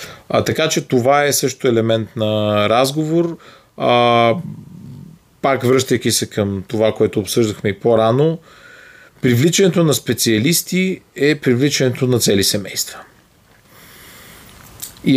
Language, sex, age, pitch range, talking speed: Bulgarian, male, 30-49, 105-130 Hz, 110 wpm